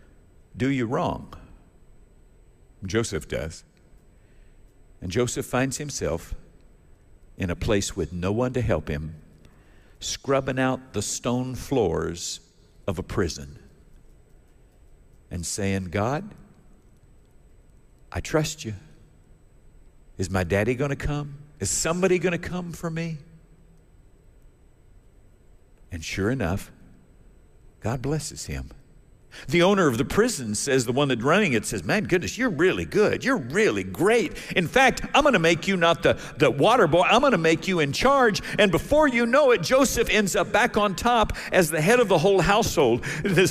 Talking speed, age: 150 wpm, 50-69